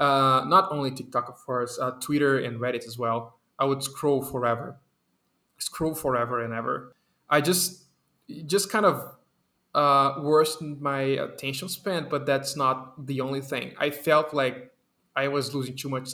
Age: 20-39